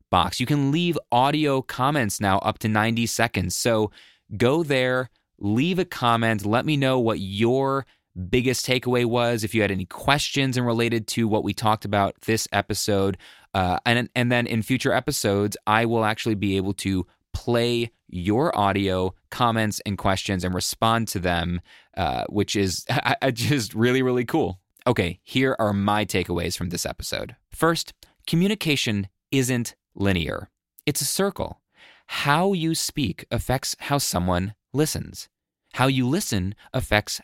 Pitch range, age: 95-130 Hz, 20-39